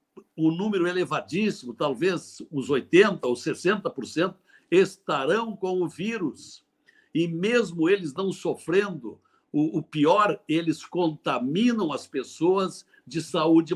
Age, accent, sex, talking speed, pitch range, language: 60-79, Brazilian, male, 115 wpm, 155-200 Hz, Portuguese